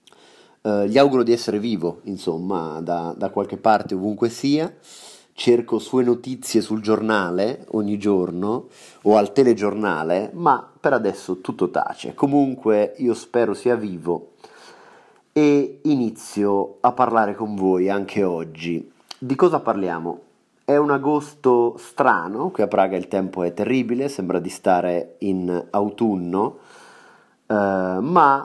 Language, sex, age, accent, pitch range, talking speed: Italian, male, 30-49, native, 95-120 Hz, 125 wpm